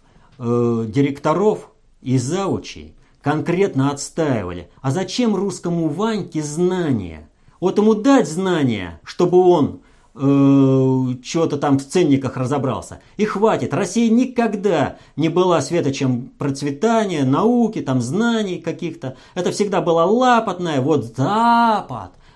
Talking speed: 105 wpm